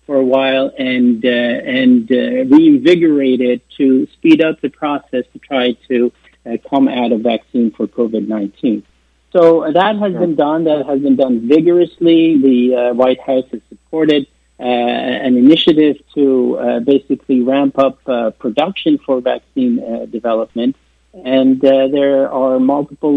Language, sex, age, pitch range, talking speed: Arabic, male, 50-69, 120-150 Hz, 150 wpm